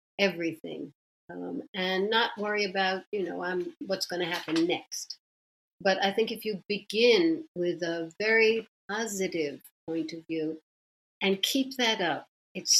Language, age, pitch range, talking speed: English, 60-79, 180-220 Hz, 150 wpm